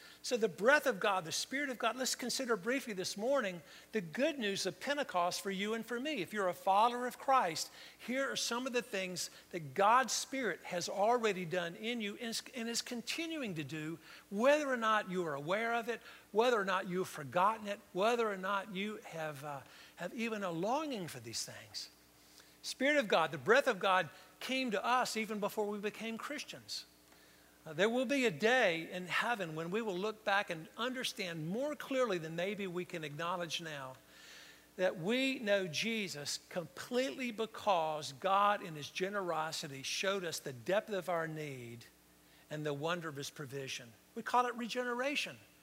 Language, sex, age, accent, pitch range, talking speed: English, male, 50-69, American, 165-240 Hz, 185 wpm